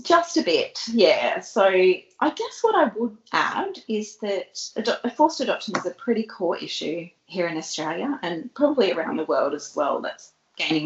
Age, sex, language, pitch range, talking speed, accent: 30-49, female, English, 170-245 Hz, 175 wpm, Australian